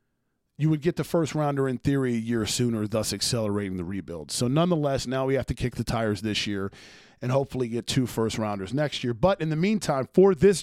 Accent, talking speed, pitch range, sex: American, 225 wpm, 120-160 Hz, male